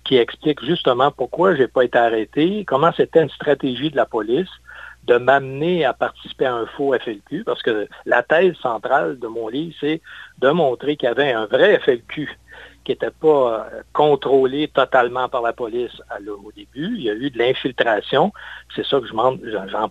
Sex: male